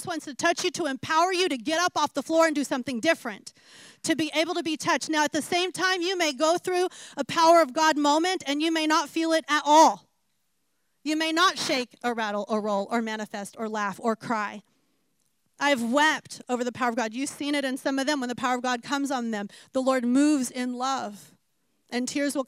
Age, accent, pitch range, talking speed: 30-49, American, 245-310 Hz, 240 wpm